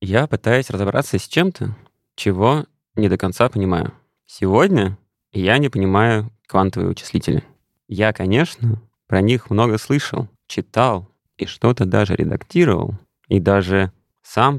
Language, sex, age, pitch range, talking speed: Russian, male, 20-39, 95-120 Hz, 125 wpm